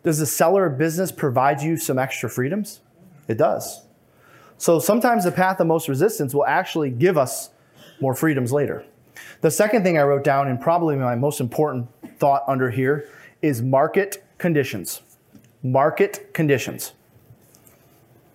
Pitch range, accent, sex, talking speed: 135-175 Hz, American, male, 145 wpm